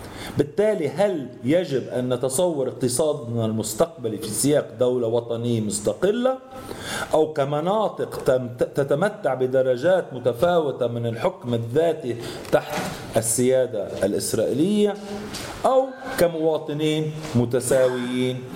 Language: English